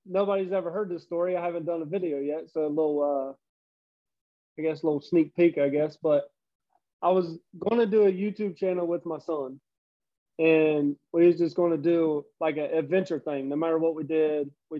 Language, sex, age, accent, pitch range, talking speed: English, male, 20-39, American, 150-180 Hz, 210 wpm